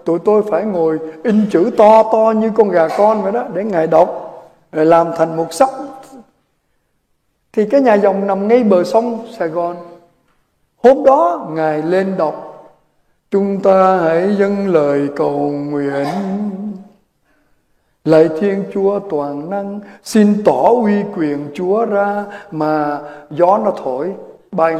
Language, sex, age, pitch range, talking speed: Vietnamese, male, 60-79, 165-235 Hz, 145 wpm